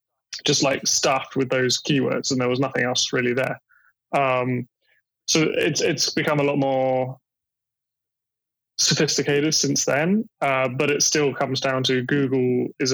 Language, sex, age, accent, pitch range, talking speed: English, male, 20-39, British, 130-140 Hz, 155 wpm